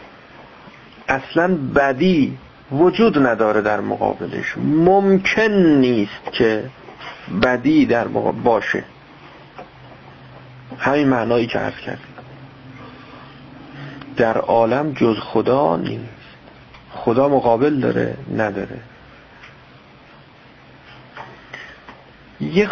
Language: Persian